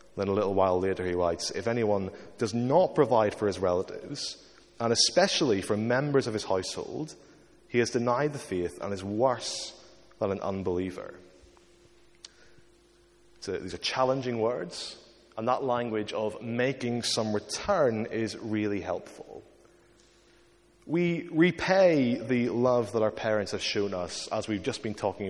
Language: English